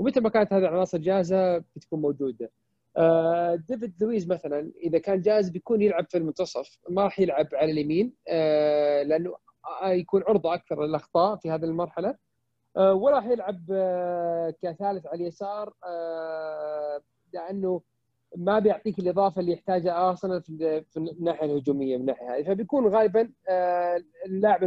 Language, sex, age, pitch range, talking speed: Arabic, male, 30-49, 160-200 Hz, 125 wpm